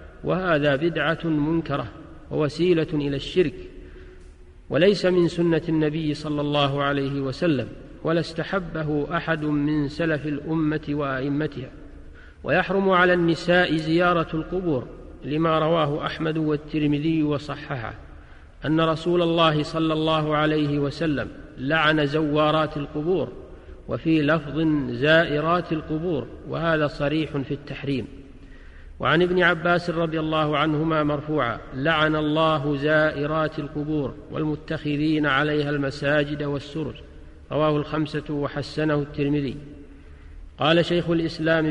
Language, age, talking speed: Arabic, 50-69, 100 wpm